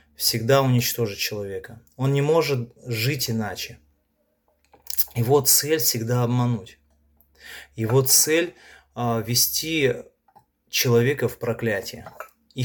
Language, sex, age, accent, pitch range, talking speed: Russian, male, 20-39, native, 110-135 Hz, 95 wpm